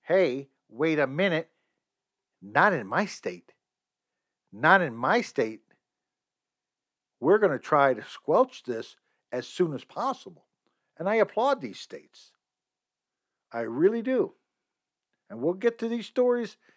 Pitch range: 150-180 Hz